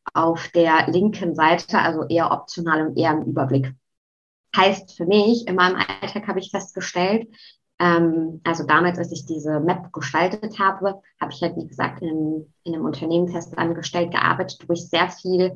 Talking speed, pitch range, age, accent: 165 wpm, 165-190 Hz, 20-39, German